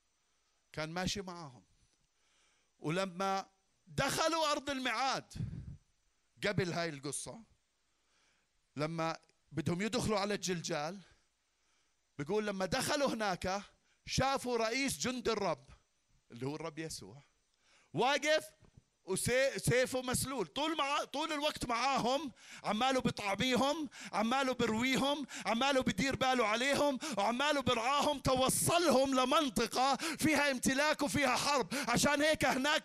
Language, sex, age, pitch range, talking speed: Arabic, male, 50-69, 210-295 Hz, 100 wpm